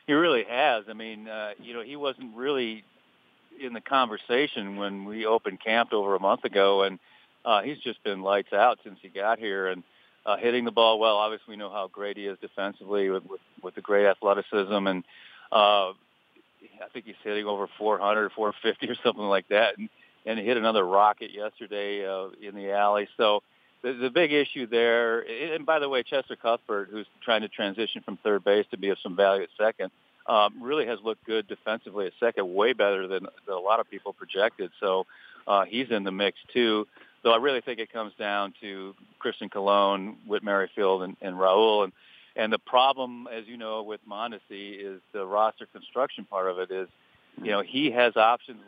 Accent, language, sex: American, English, male